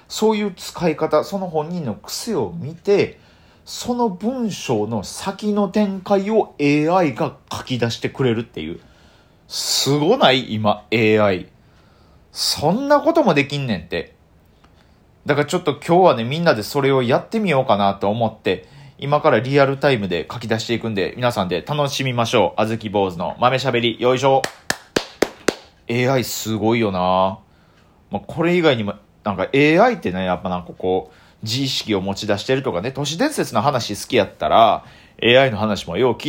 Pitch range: 105-155 Hz